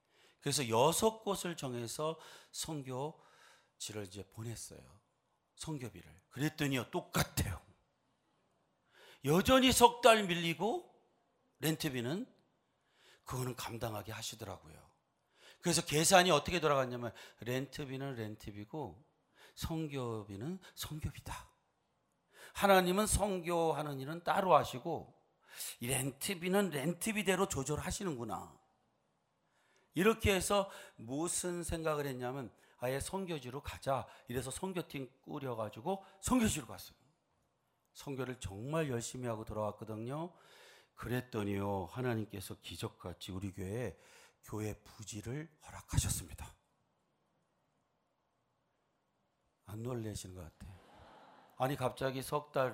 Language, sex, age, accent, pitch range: Korean, male, 40-59, native, 110-160 Hz